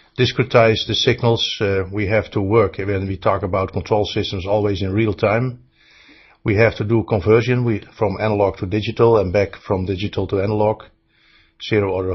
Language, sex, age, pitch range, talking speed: English, male, 50-69, 95-115 Hz, 175 wpm